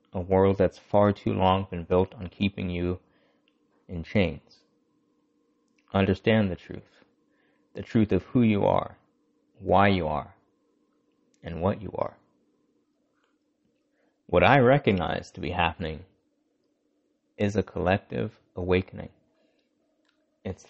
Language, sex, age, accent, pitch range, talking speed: English, male, 30-49, American, 95-140 Hz, 115 wpm